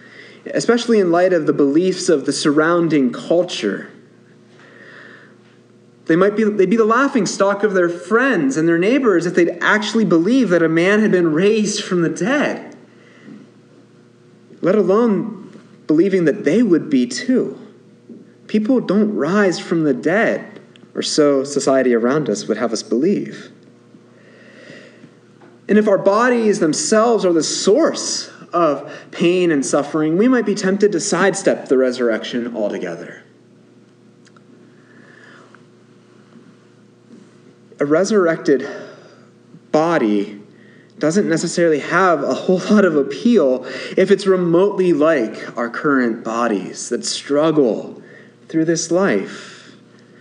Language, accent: English, American